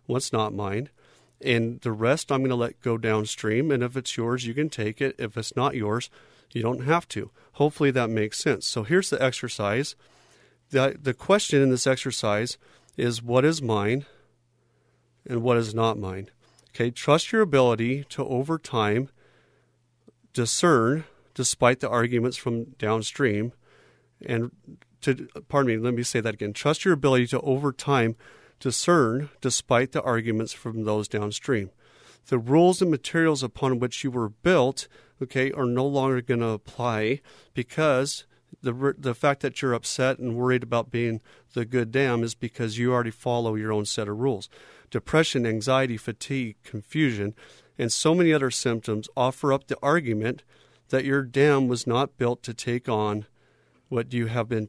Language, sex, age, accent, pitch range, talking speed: English, male, 40-59, American, 115-135 Hz, 165 wpm